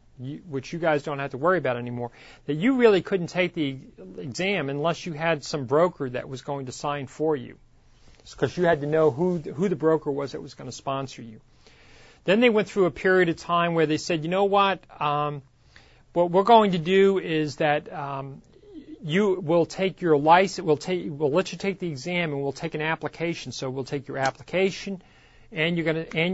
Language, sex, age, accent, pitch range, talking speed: English, male, 40-59, American, 140-180 Hz, 220 wpm